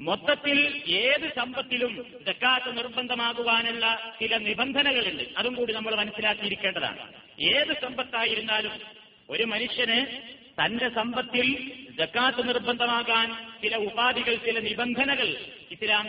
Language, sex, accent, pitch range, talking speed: Malayalam, male, native, 220-250 Hz, 90 wpm